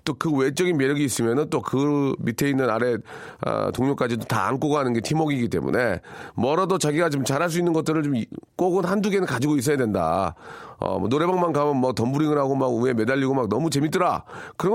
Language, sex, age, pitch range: Korean, male, 40-59, 125-185 Hz